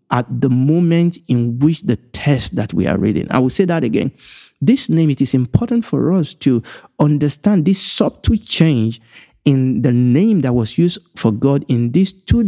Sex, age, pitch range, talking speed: male, 50-69, 125-175 Hz, 190 wpm